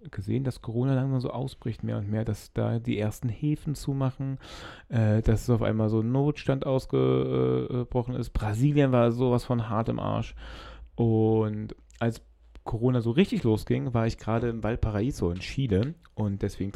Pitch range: 110-130 Hz